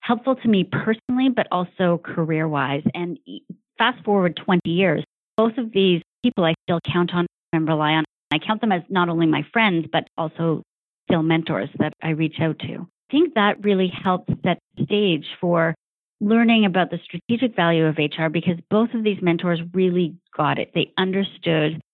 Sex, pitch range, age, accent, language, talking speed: female, 165-200 Hz, 40-59, American, English, 185 wpm